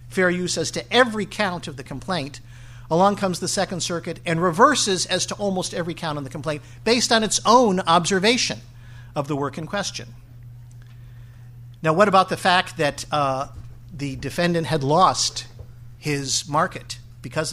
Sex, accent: male, American